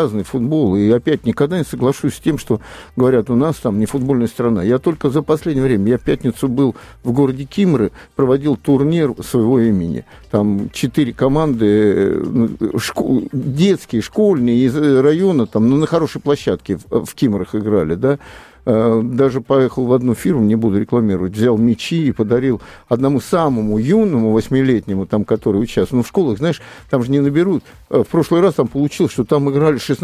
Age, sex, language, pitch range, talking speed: 50-69, male, Russian, 115-165 Hz, 170 wpm